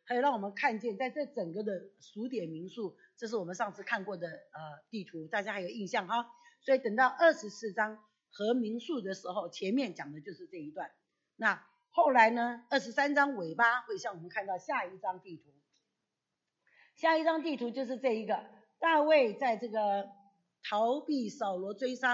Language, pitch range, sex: Chinese, 205-285 Hz, female